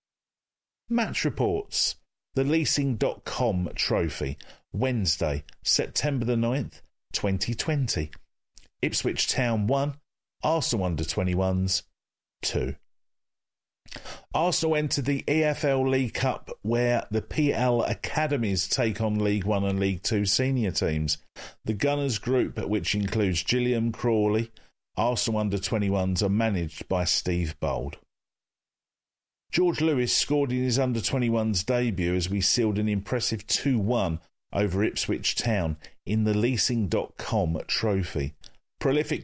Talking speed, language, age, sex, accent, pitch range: 105 wpm, English, 50-69, male, British, 95-125 Hz